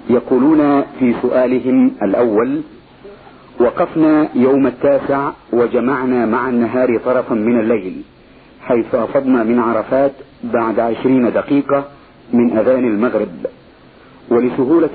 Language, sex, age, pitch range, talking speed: Arabic, male, 50-69, 125-145 Hz, 95 wpm